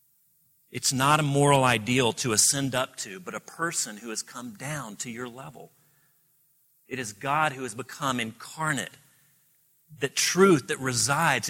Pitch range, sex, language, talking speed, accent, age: 125-155 Hz, male, English, 155 wpm, American, 40-59